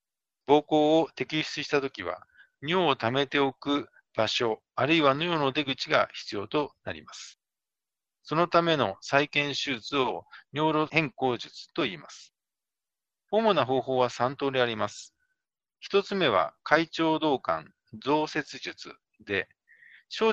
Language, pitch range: Japanese, 135-165 Hz